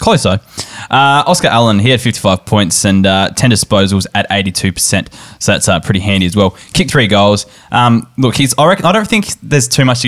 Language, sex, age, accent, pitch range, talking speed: English, male, 10-29, Australian, 95-115 Hz, 220 wpm